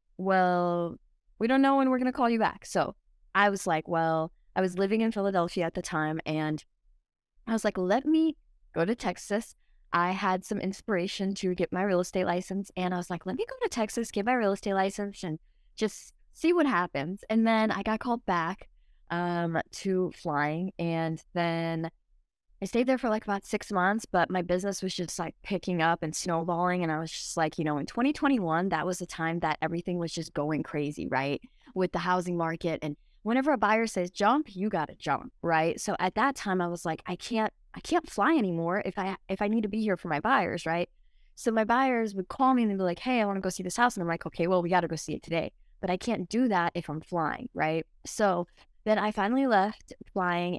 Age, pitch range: 20-39, 170-215 Hz